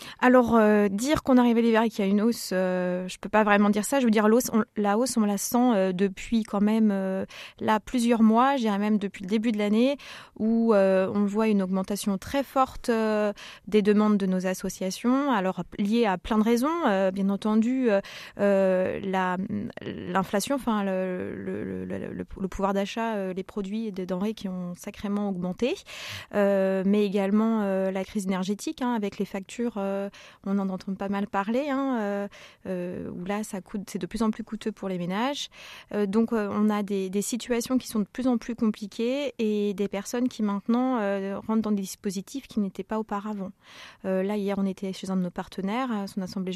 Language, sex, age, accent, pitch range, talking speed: French, female, 20-39, French, 195-230 Hz, 210 wpm